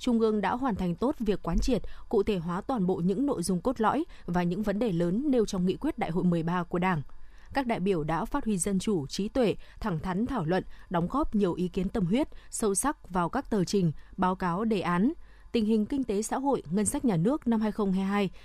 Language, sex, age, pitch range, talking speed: Vietnamese, female, 20-39, 180-235 Hz, 245 wpm